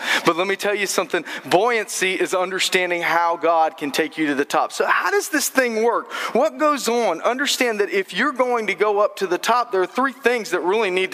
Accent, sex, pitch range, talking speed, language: American, male, 165-230 Hz, 235 wpm, English